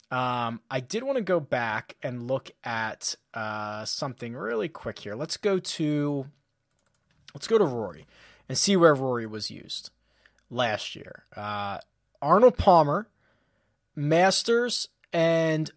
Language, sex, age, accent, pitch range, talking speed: English, male, 20-39, American, 125-175 Hz, 135 wpm